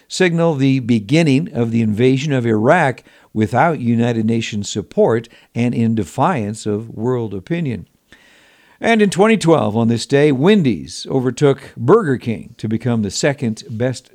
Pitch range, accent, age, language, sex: 115-145 Hz, American, 60-79, Japanese, male